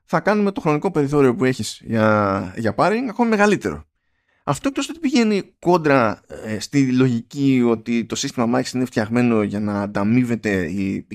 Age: 20-39